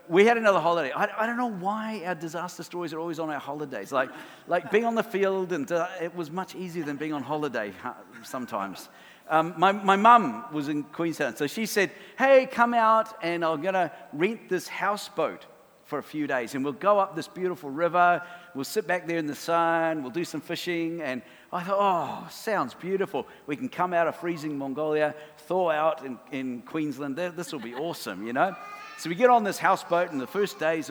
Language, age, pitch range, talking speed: English, 50-69, 155-200 Hz, 215 wpm